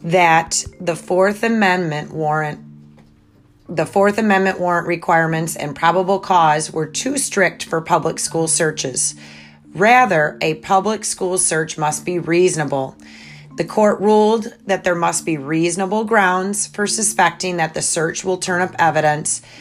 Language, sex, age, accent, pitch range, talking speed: English, female, 30-49, American, 150-185 Hz, 140 wpm